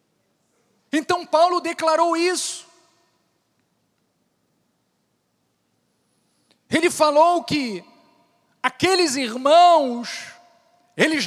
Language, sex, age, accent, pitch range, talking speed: Portuguese, male, 40-59, Brazilian, 235-295 Hz, 55 wpm